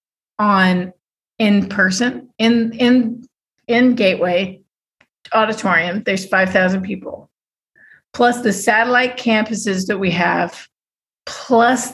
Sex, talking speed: female, 90 wpm